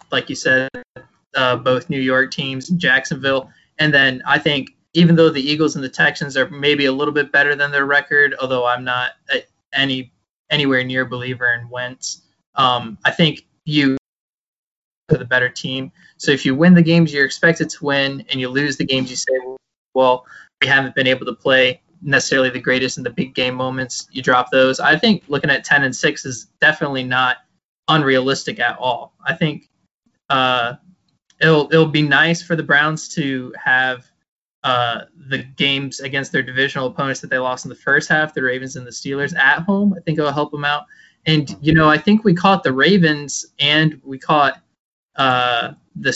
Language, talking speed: English, 195 wpm